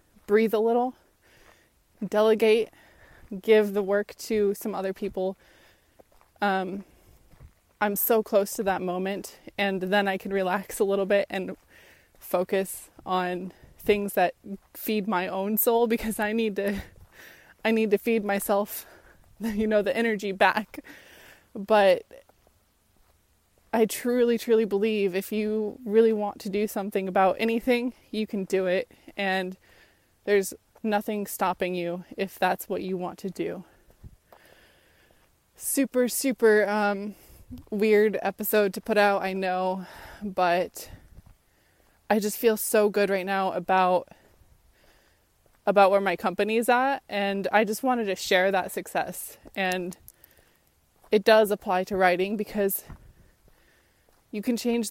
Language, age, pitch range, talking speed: English, 20-39, 185-220 Hz, 135 wpm